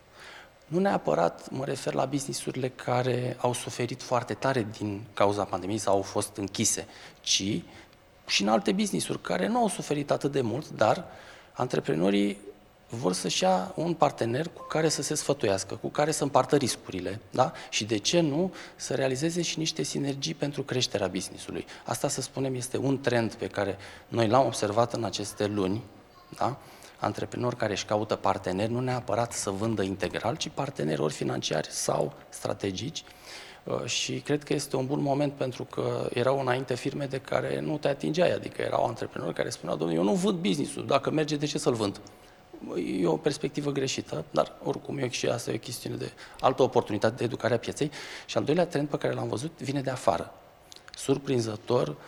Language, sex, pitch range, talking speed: Romanian, male, 105-145 Hz, 180 wpm